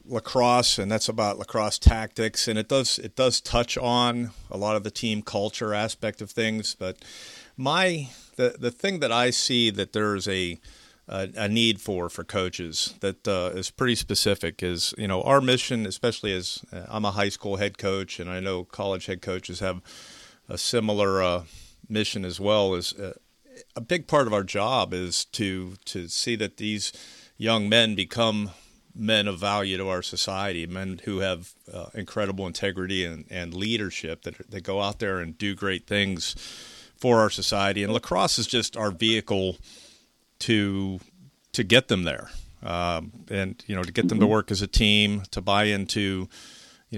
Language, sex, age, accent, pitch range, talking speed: English, male, 50-69, American, 95-115 Hz, 180 wpm